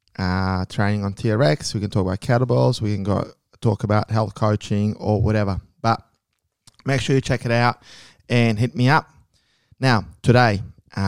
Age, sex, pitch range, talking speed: 20-39, male, 105-125 Hz, 170 wpm